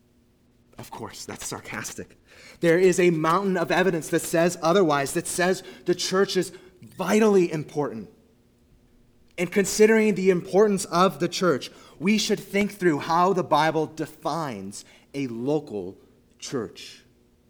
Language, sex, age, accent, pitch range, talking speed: English, male, 30-49, American, 120-155 Hz, 130 wpm